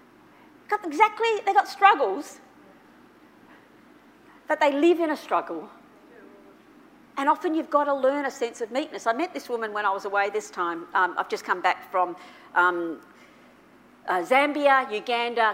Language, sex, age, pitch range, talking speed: English, female, 50-69, 200-295 Hz, 160 wpm